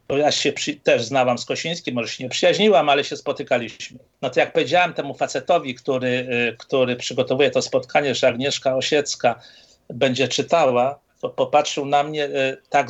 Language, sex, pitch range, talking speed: Polish, male, 130-150 Hz, 170 wpm